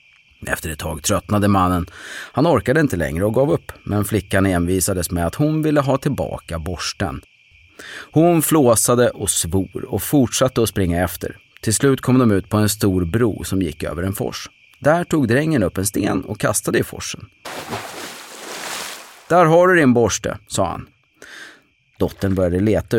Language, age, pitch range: Swedish, 30-49, 90-130 Hz